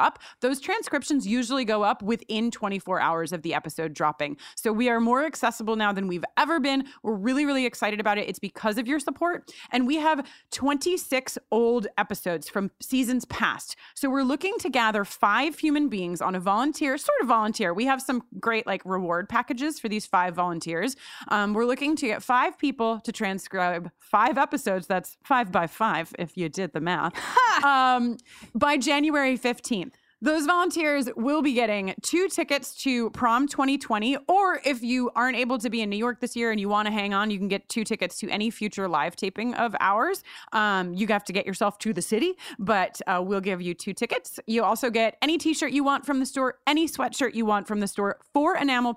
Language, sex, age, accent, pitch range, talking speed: English, female, 30-49, American, 200-275 Hz, 205 wpm